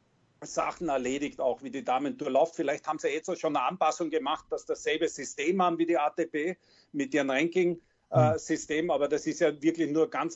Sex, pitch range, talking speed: male, 155-195 Hz, 195 wpm